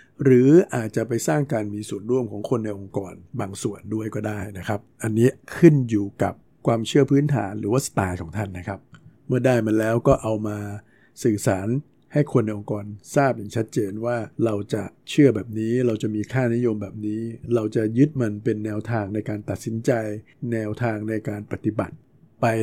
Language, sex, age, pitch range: Thai, male, 60-79, 105-130 Hz